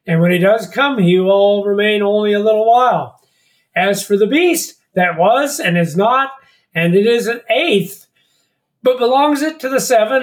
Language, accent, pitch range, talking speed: English, American, 170-215 Hz, 190 wpm